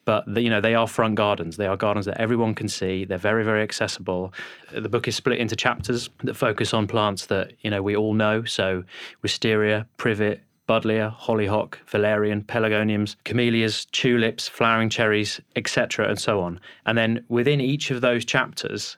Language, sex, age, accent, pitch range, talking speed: English, male, 30-49, British, 105-120 Hz, 180 wpm